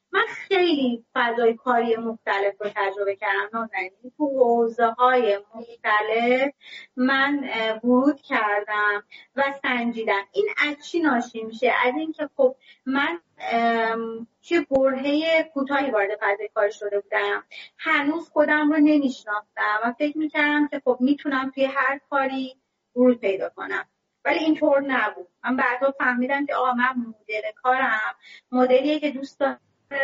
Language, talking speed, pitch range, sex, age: Persian, 135 wpm, 220-275 Hz, female, 30-49